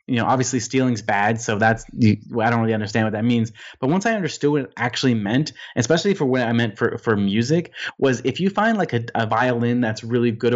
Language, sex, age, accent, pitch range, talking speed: English, male, 20-39, American, 115-145 Hz, 235 wpm